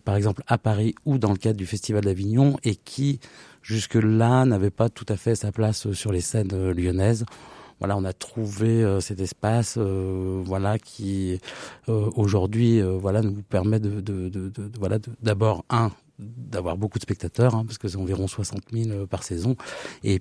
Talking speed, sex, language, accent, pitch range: 190 wpm, male, French, French, 100-115 Hz